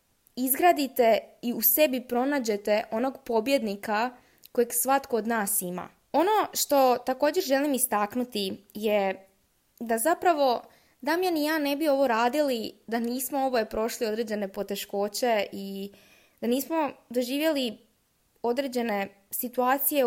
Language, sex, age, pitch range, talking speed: Croatian, female, 20-39, 205-265 Hz, 115 wpm